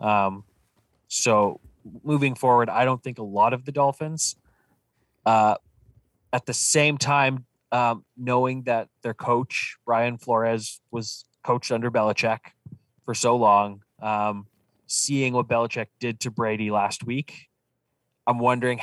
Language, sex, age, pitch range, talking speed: English, male, 20-39, 110-130 Hz, 135 wpm